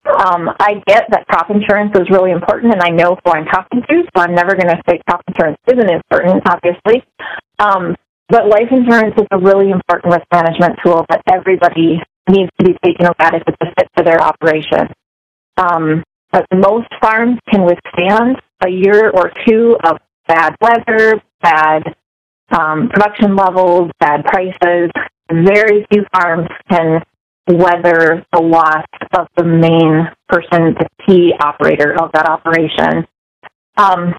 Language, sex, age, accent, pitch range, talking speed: English, female, 30-49, American, 165-210 Hz, 155 wpm